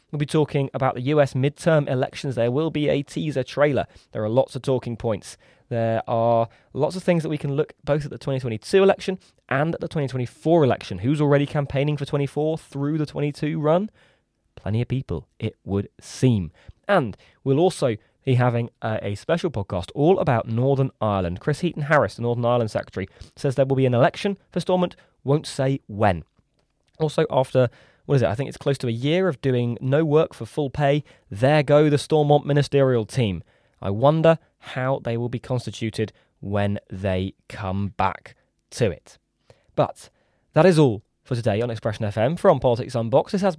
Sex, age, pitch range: male, 20-39, 115-150 Hz